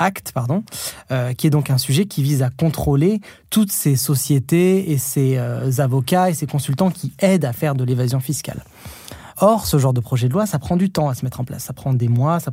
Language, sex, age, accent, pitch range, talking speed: French, male, 20-39, French, 130-170 Hz, 240 wpm